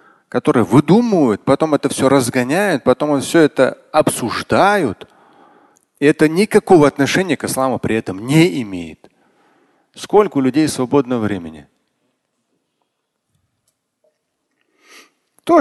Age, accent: 40-59, native